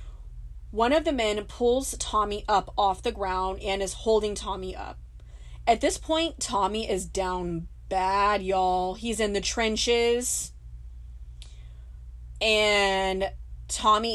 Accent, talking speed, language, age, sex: American, 125 wpm, English, 20-39, female